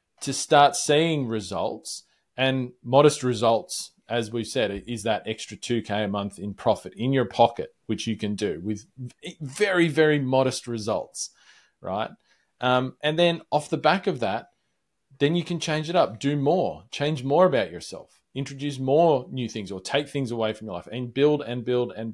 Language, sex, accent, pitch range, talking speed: English, male, Australian, 120-155 Hz, 180 wpm